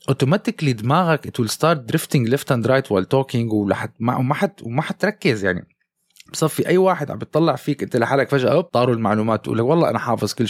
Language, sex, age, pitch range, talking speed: Arabic, male, 20-39, 110-145 Hz, 160 wpm